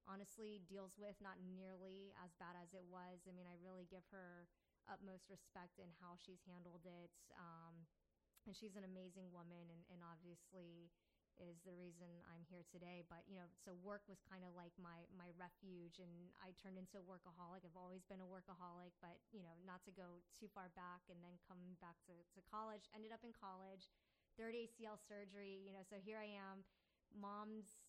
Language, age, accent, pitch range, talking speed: English, 20-39, American, 180-200 Hz, 195 wpm